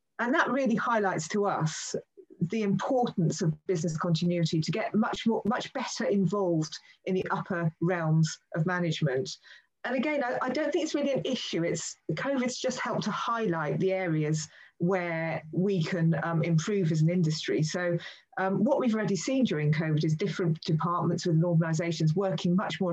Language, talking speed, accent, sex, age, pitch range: English, 175 wpm, British, female, 30-49, 160-195 Hz